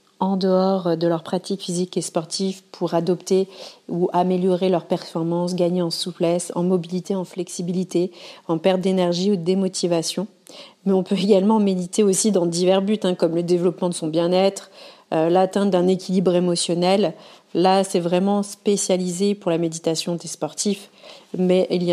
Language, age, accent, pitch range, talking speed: French, 40-59, French, 175-195 Hz, 165 wpm